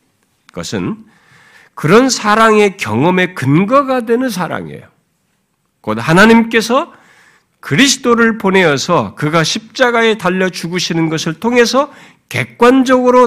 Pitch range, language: 160-260 Hz, Korean